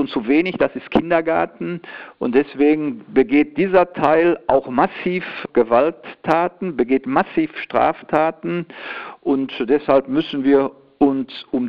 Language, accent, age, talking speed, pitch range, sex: German, German, 50-69, 120 wpm, 130-165 Hz, male